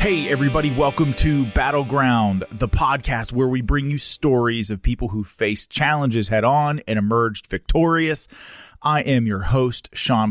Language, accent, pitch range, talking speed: English, American, 100-120 Hz, 155 wpm